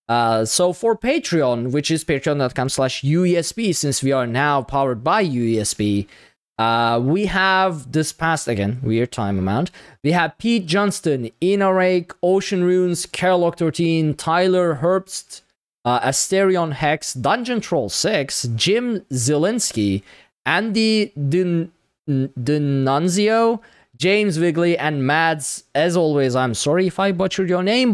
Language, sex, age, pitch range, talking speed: English, male, 20-39, 125-180 Hz, 130 wpm